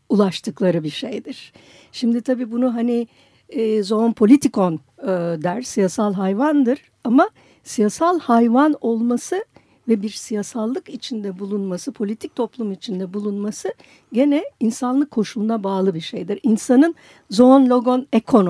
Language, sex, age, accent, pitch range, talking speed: Turkish, female, 60-79, native, 200-265 Hz, 120 wpm